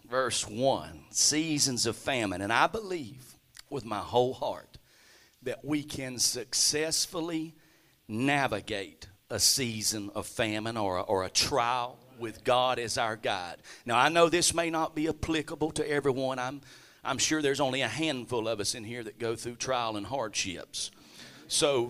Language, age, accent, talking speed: English, 40-59, American, 160 wpm